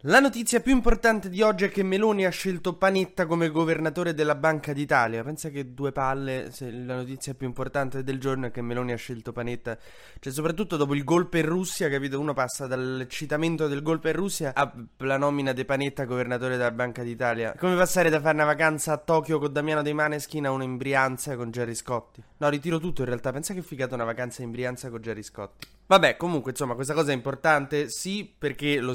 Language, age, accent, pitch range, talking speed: Italian, 20-39, native, 125-155 Hz, 210 wpm